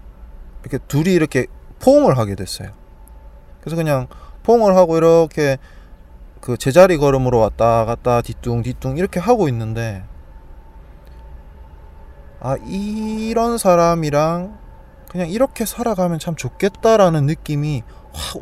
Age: 20-39